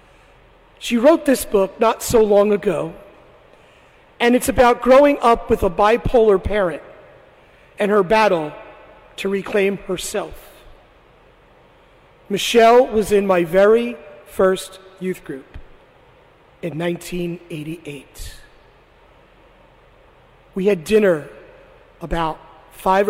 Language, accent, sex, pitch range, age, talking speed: English, American, male, 180-230 Hz, 40-59, 100 wpm